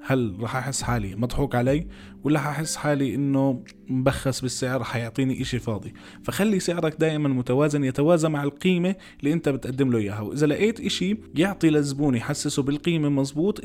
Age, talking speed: 20-39, 155 wpm